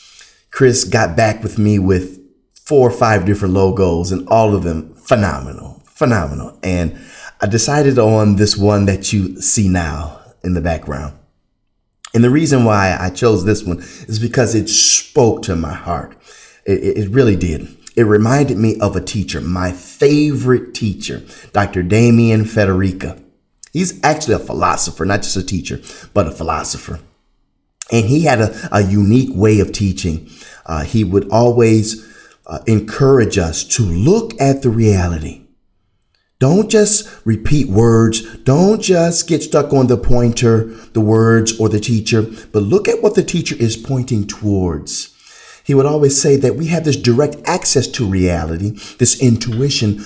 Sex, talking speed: male, 160 wpm